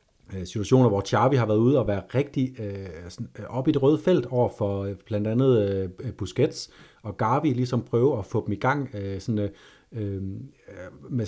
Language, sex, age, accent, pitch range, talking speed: Danish, male, 30-49, native, 105-130 Hz, 185 wpm